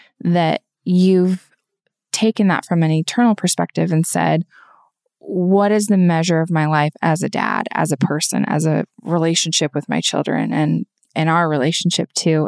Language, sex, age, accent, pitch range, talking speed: English, female, 20-39, American, 160-190 Hz, 165 wpm